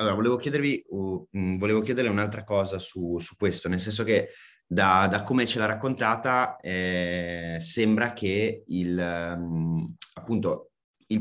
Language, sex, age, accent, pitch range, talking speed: Italian, male, 30-49, native, 90-105 Hz, 150 wpm